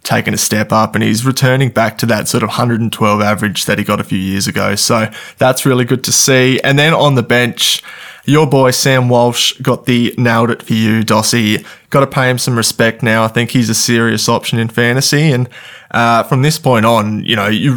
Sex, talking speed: male, 225 wpm